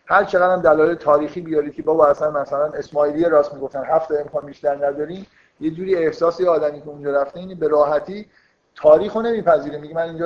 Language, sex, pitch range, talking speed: Persian, male, 140-180 Hz, 180 wpm